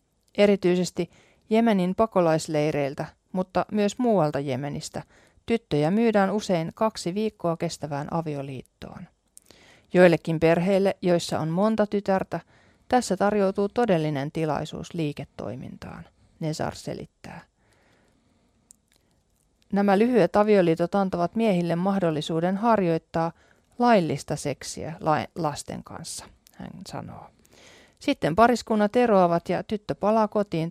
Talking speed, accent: 90 wpm, native